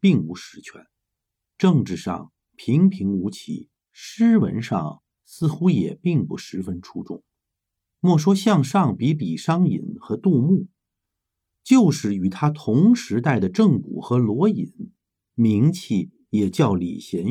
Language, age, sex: Chinese, 50-69, male